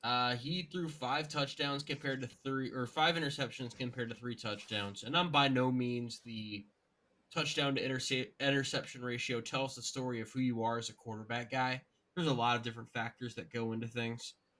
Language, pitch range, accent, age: English, 115-140 Hz, American, 20-39